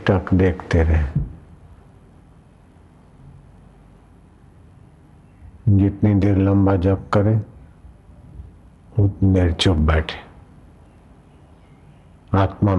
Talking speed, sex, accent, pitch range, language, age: 60 wpm, male, native, 80-100 Hz, Hindi, 50-69